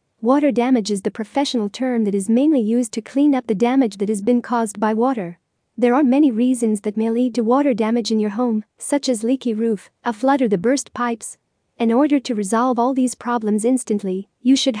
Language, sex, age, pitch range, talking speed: English, female, 40-59, 220-255 Hz, 220 wpm